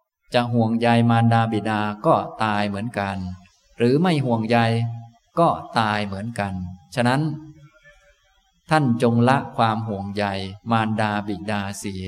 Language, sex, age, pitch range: Thai, male, 20-39, 105-130 Hz